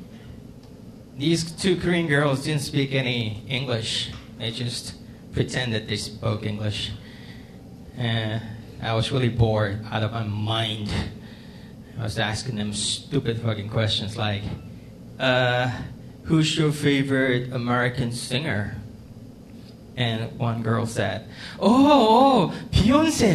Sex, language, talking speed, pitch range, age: male, English, 115 wpm, 110-135 Hz, 20-39